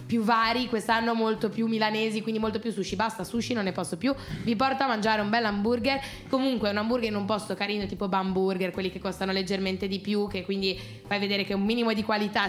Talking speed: 225 wpm